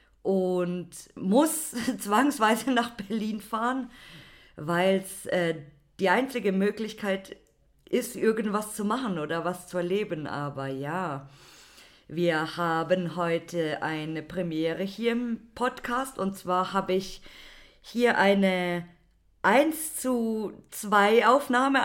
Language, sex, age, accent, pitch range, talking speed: German, female, 50-69, German, 180-235 Hz, 110 wpm